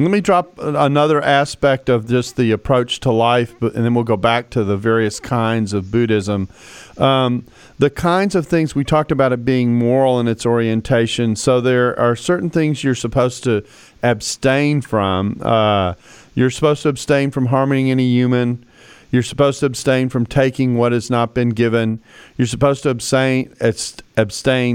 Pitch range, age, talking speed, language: 110-130 Hz, 40-59, 170 wpm, English